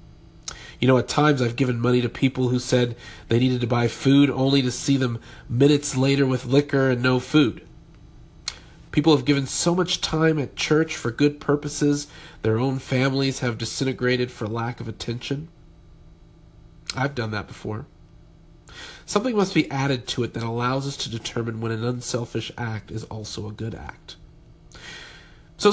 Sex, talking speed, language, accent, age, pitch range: male, 170 wpm, English, American, 40-59, 115-150 Hz